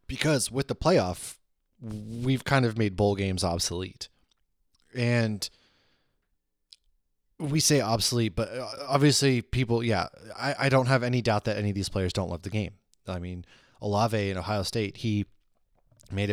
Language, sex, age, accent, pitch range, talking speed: English, male, 20-39, American, 95-125 Hz, 155 wpm